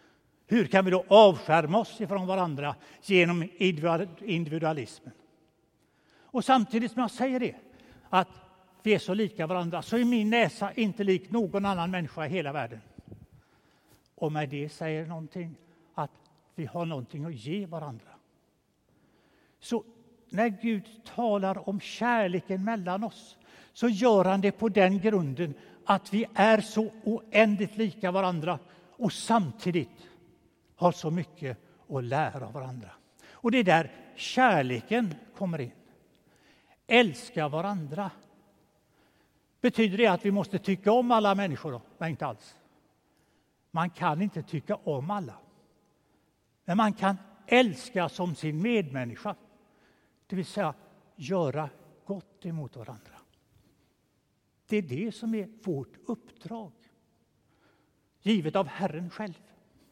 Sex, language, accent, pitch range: male, Swedish, native, 160-215 Hz